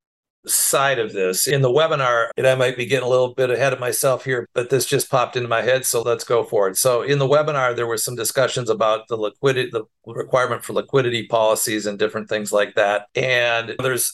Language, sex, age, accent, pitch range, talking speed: English, male, 50-69, American, 115-135 Hz, 220 wpm